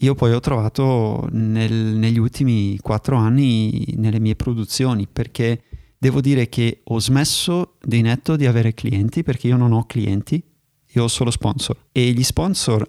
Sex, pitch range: male, 110-125 Hz